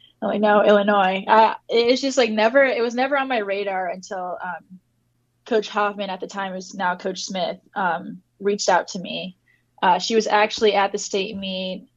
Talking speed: 185 wpm